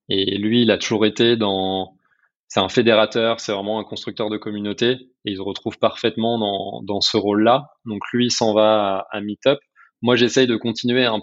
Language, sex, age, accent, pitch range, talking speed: French, male, 20-39, French, 100-115 Hz, 205 wpm